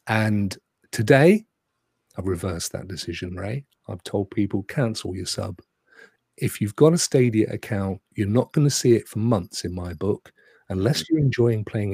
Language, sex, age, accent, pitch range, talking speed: English, male, 40-59, British, 95-130 Hz, 170 wpm